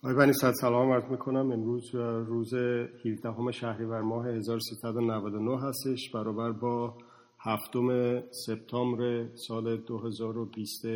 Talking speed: 105 wpm